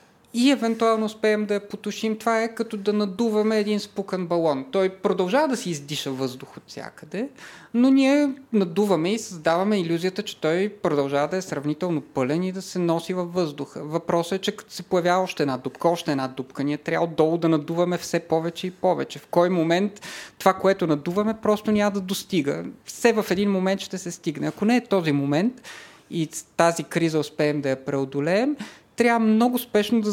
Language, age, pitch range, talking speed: Bulgarian, 30-49, 160-215 Hz, 185 wpm